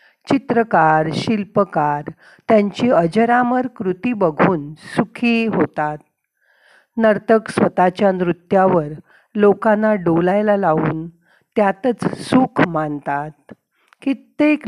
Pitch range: 165-225 Hz